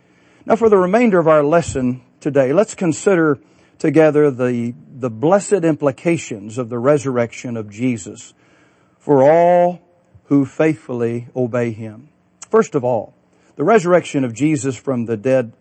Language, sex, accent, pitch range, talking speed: English, male, American, 125-165 Hz, 140 wpm